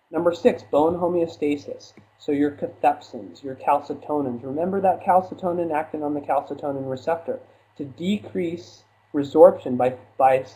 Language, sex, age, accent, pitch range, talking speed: English, male, 30-49, American, 130-165 Hz, 125 wpm